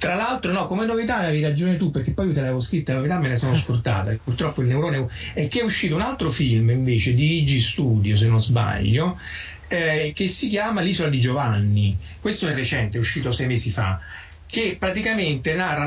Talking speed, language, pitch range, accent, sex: 210 wpm, Italian, 120-165 Hz, native, male